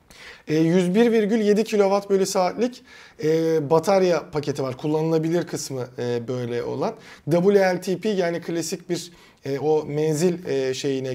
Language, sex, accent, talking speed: Turkish, male, native, 85 wpm